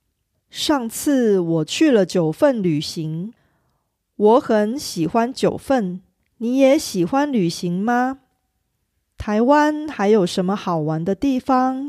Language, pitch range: Korean, 180-255 Hz